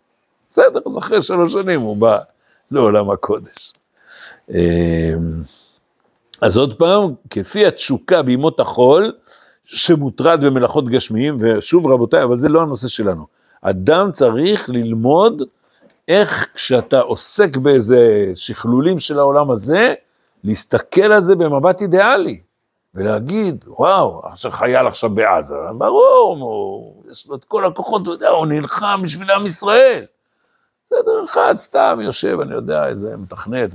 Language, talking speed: Hebrew, 125 wpm